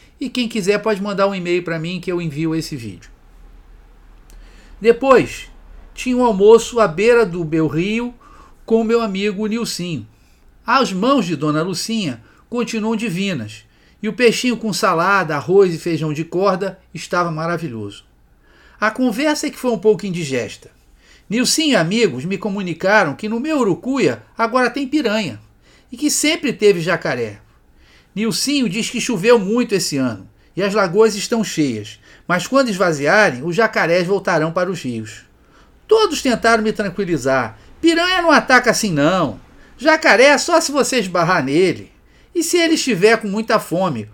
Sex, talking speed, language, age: male, 160 wpm, Portuguese, 50-69